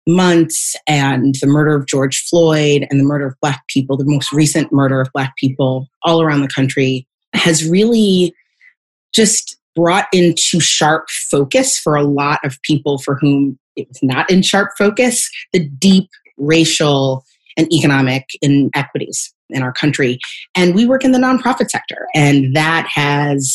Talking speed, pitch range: 160 wpm, 140-170 Hz